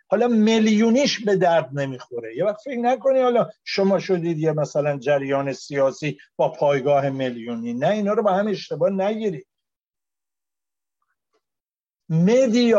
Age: 50-69